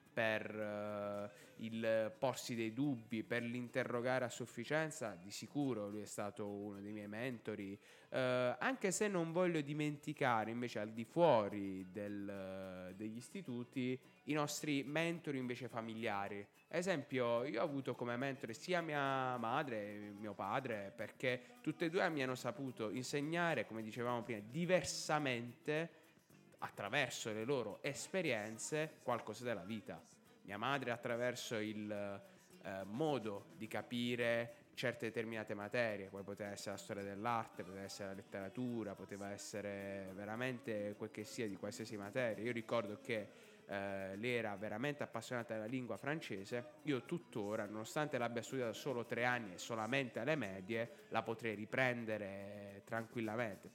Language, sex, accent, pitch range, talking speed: Italian, male, native, 105-135 Hz, 140 wpm